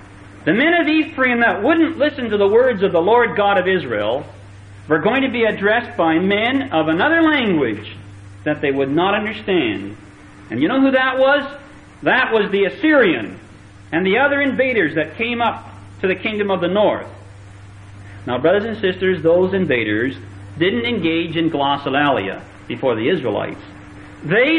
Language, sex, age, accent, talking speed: English, male, 50-69, American, 165 wpm